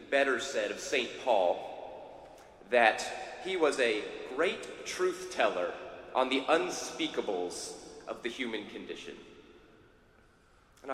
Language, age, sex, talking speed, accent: English, 30-49, male, 110 wpm, American